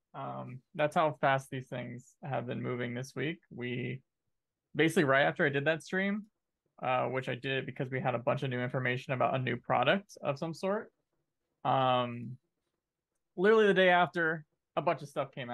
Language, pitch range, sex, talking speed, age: English, 125-165 Hz, male, 185 wpm, 20-39